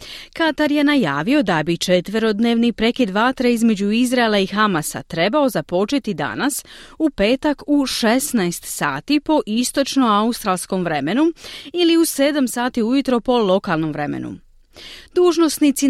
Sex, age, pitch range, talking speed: female, 30-49, 185-265 Hz, 120 wpm